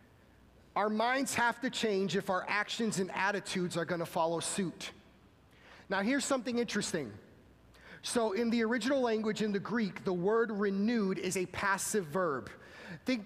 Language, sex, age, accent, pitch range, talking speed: English, male, 30-49, American, 195-245 Hz, 160 wpm